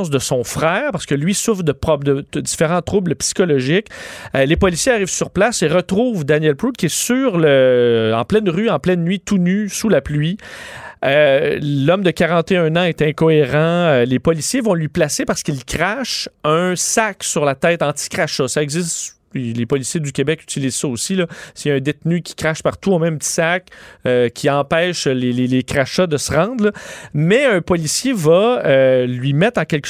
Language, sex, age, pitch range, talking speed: French, male, 30-49, 140-185 Hz, 200 wpm